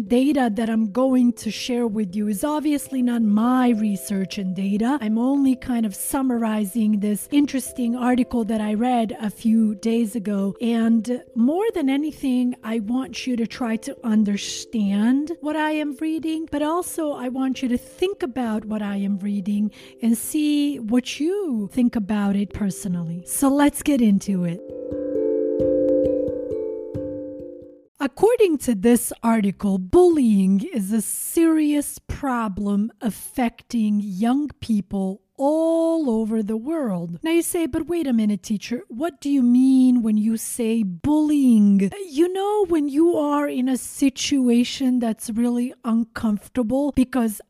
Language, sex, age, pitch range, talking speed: English, female, 30-49, 220-275 Hz, 145 wpm